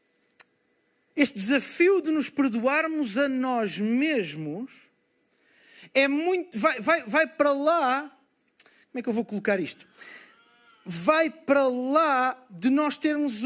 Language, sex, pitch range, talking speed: Portuguese, male, 240-310 Hz, 125 wpm